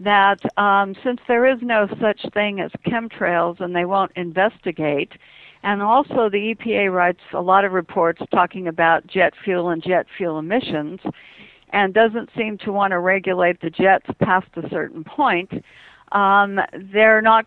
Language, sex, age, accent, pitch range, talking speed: English, female, 60-79, American, 180-220 Hz, 160 wpm